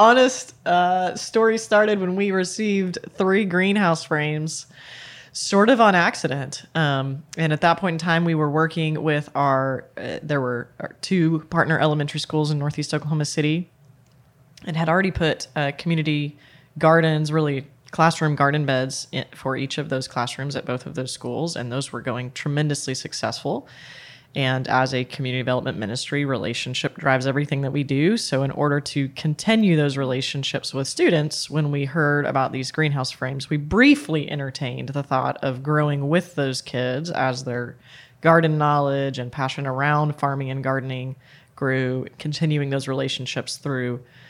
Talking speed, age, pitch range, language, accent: 160 wpm, 20-39, 130-165 Hz, English, American